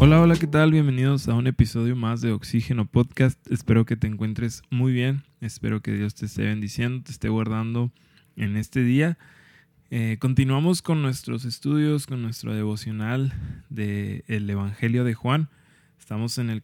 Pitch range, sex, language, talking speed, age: 125-150 Hz, male, Spanish, 165 wpm, 20-39